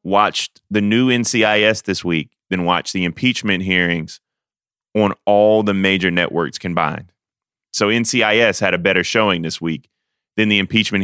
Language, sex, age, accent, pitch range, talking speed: English, male, 30-49, American, 95-120 Hz, 150 wpm